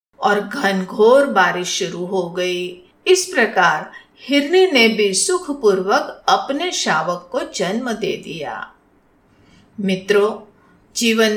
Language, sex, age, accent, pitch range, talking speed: Hindi, female, 50-69, native, 185-250 Hz, 110 wpm